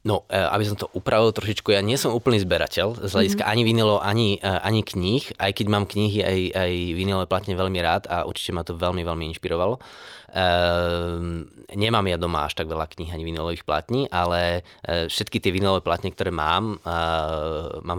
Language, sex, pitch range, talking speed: Slovak, male, 85-100 Hz, 175 wpm